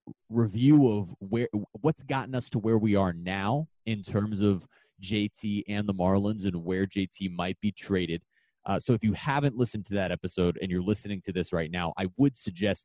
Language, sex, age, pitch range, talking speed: English, male, 30-49, 95-120 Hz, 200 wpm